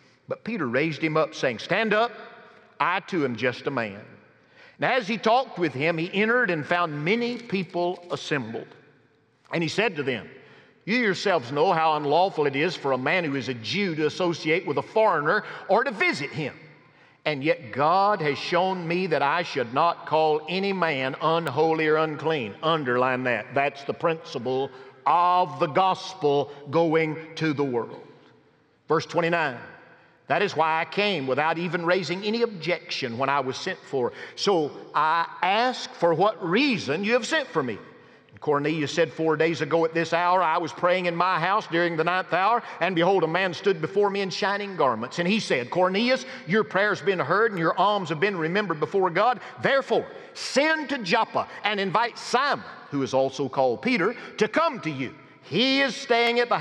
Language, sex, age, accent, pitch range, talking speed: English, male, 50-69, American, 155-210 Hz, 190 wpm